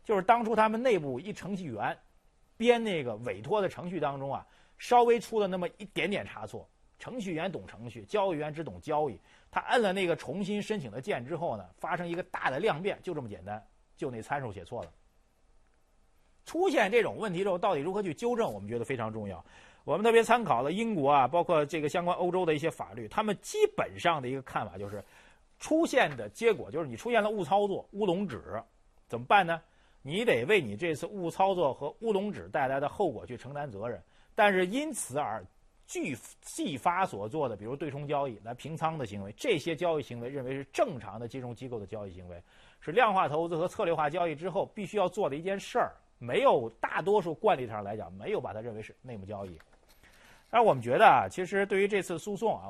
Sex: male